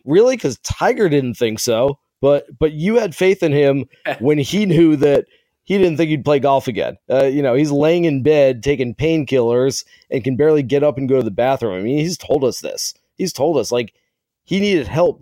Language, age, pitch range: English, 30-49, 125-155 Hz